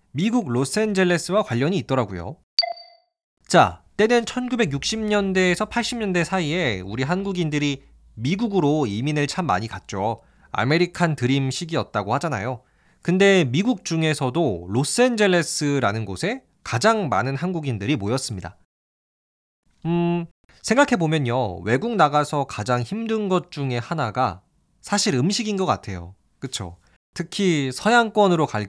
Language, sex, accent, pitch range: Korean, male, native, 110-185 Hz